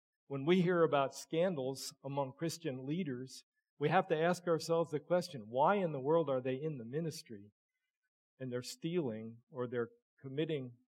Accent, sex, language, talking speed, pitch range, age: American, male, English, 165 wpm, 125-165 Hz, 50-69